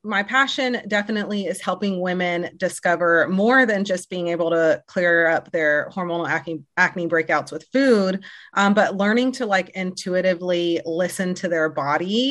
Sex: female